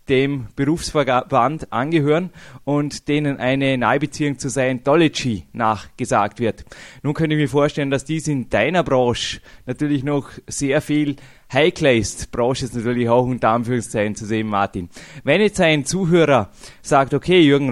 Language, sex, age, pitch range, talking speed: German, male, 20-39, 125-150 Hz, 150 wpm